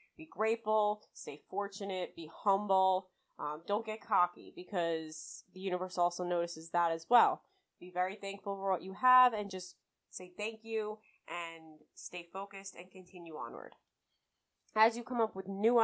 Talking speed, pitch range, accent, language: 160 wpm, 170-190 Hz, American, English